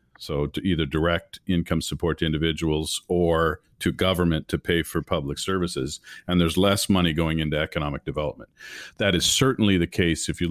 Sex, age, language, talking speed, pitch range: male, 40-59, English, 175 wpm, 80-95 Hz